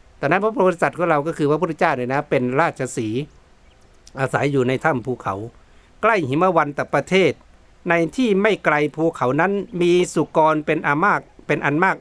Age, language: 60-79, Thai